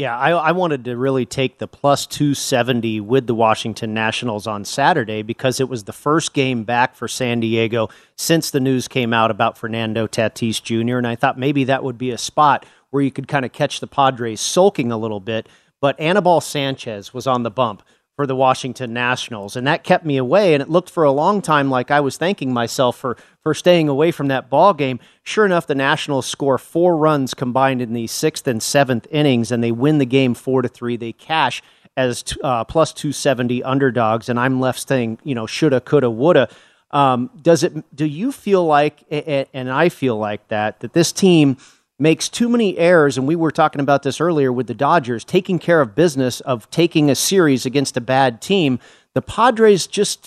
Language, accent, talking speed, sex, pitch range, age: English, American, 210 wpm, male, 125-155 Hz, 40-59